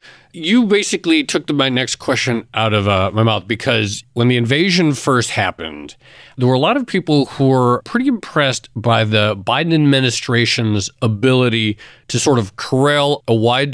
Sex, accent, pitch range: male, American, 110-145 Hz